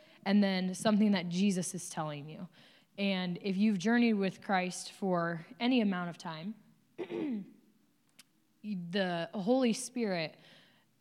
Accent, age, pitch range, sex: American, 20-39, 160-200 Hz, female